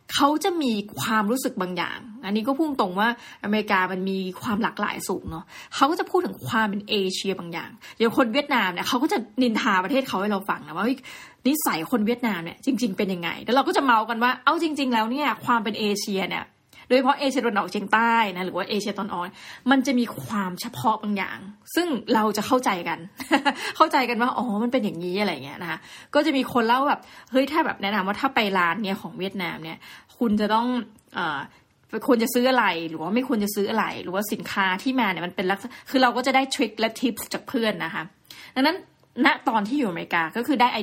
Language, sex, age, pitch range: Thai, female, 20-39, 200-265 Hz